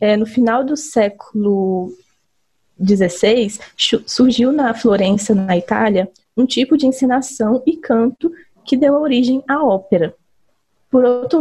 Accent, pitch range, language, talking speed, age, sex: Brazilian, 205-250 Hz, Portuguese, 120 wpm, 20-39, female